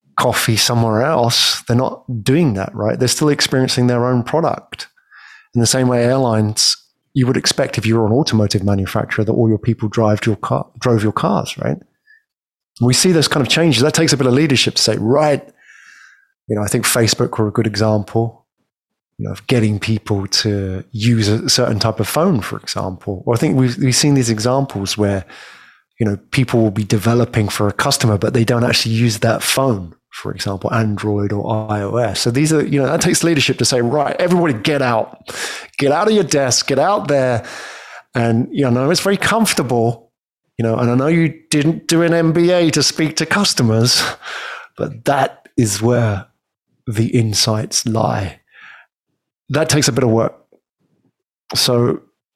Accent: British